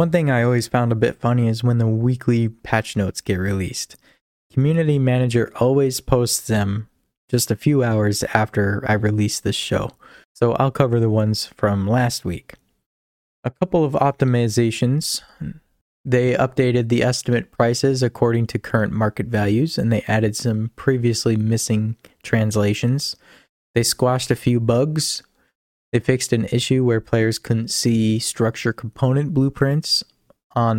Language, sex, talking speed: English, male, 150 wpm